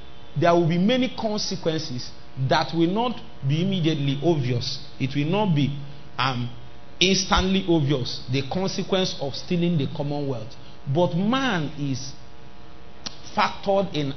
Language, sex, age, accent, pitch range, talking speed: English, male, 40-59, Nigerian, 120-175 Hz, 125 wpm